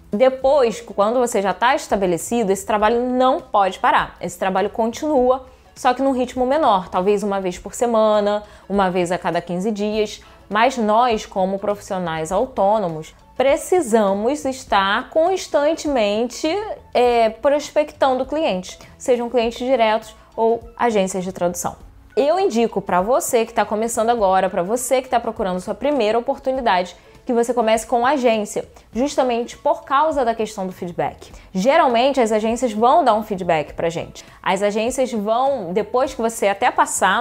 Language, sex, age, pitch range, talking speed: Portuguese, female, 20-39, 205-270 Hz, 150 wpm